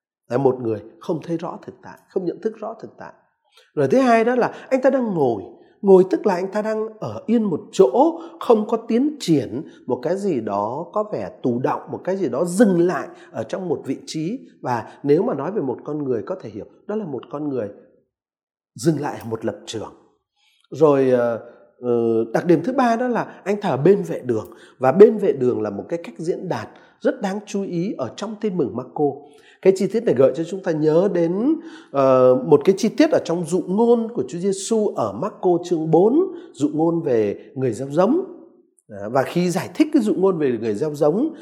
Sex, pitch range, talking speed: male, 150-235 Hz, 220 wpm